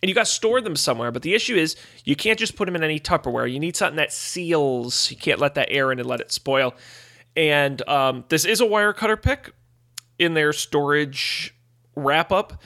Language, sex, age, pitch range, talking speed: English, male, 30-49, 130-170 Hz, 220 wpm